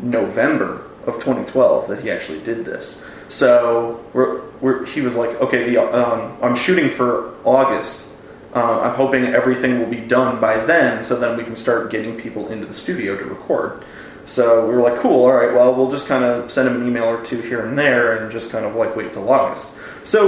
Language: English